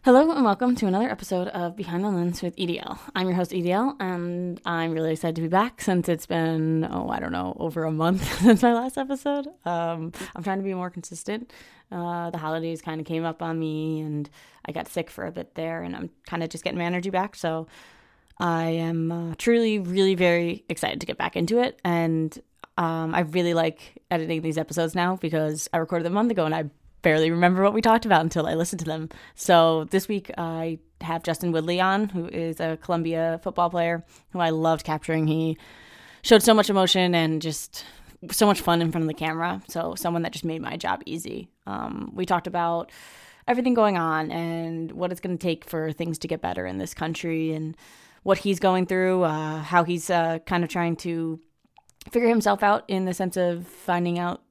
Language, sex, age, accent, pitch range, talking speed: English, female, 20-39, American, 165-185 Hz, 215 wpm